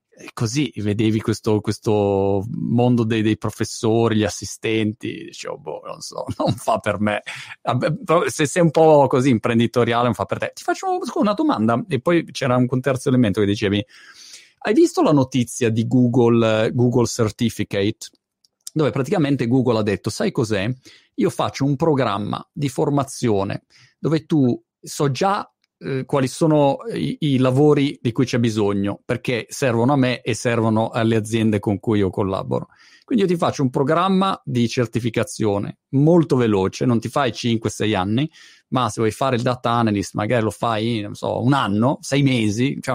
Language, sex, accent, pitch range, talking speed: Italian, male, native, 110-140 Hz, 165 wpm